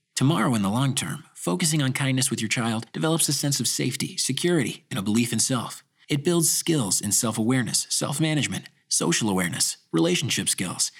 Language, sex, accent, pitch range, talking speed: English, male, American, 110-155 Hz, 175 wpm